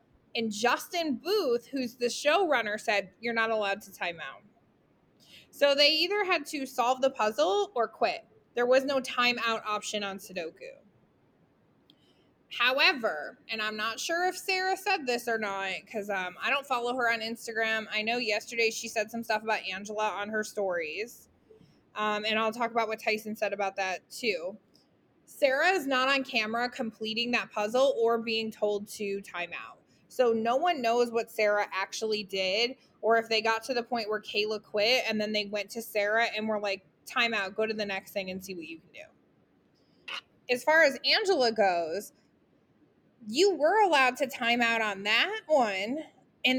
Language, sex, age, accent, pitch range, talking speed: English, female, 20-39, American, 210-275 Hz, 180 wpm